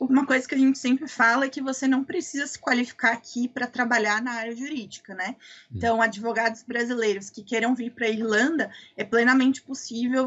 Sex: female